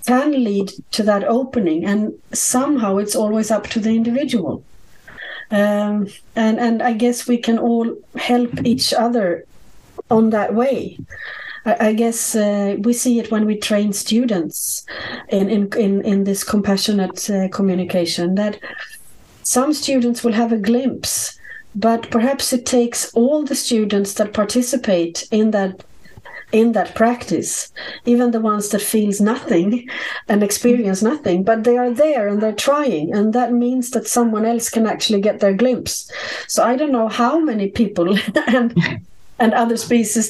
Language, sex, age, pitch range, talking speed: English, female, 40-59, 205-245 Hz, 155 wpm